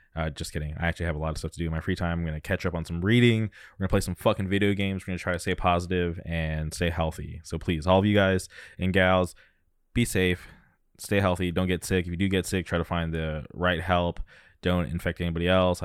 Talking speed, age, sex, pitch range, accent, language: 260 wpm, 20-39, male, 85-95 Hz, American, English